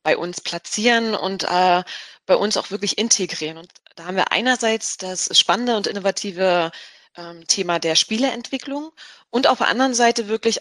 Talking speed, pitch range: 165 wpm, 180-220 Hz